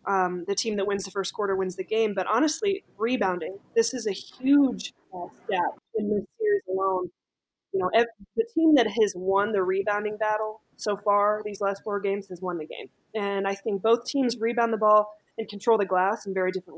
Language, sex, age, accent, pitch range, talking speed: English, female, 20-39, American, 200-250 Hz, 205 wpm